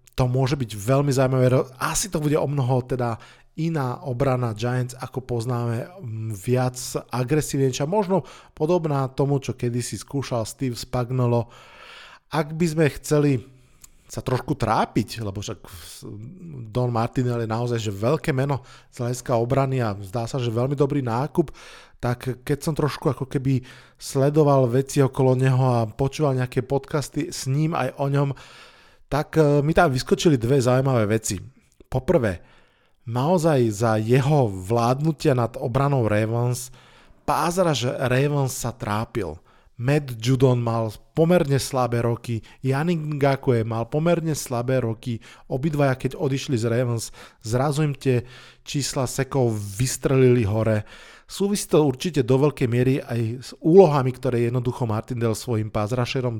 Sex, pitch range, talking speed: male, 120-140 Hz, 135 wpm